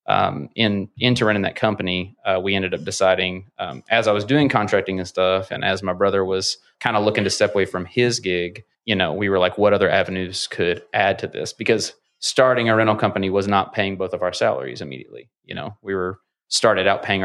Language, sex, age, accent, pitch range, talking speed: English, male, 30-49, American, 95-110 Hz, 230 wpm